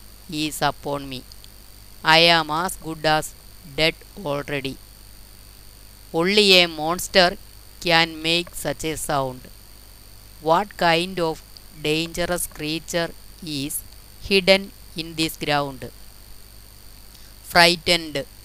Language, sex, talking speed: Malayalam, female, 95 wpm